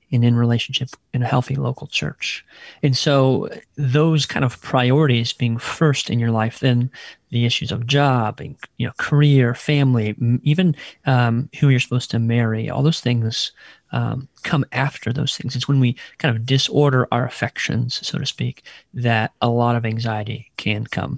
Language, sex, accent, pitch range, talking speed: English, male, American, 115-135 Hz, 175 wpm